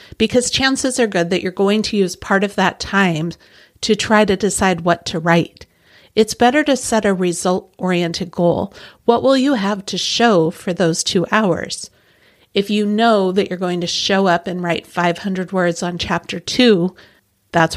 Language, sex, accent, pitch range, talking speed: English, female, American, 175-215 Hz, 180 wpm